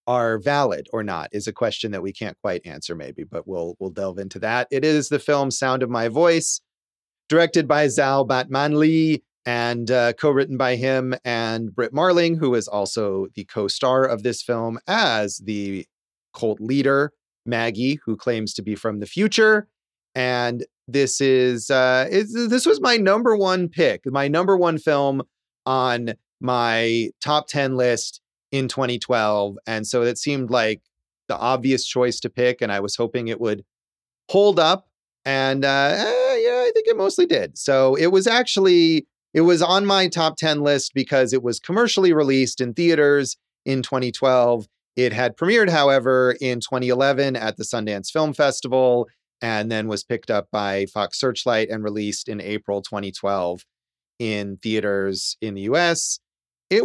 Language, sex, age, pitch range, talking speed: English, male, 30-49, 110-150 Hz, 165 wpm